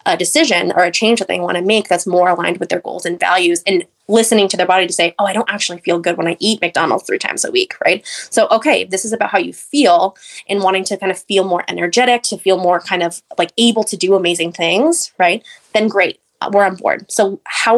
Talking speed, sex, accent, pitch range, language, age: 255 wpm, female, American, 180-220 Hz, English, 20-39